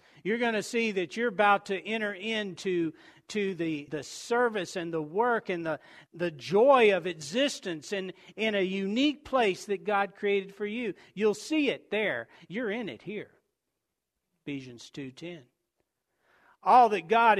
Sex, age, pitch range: male, 50-69, 190-245 Hz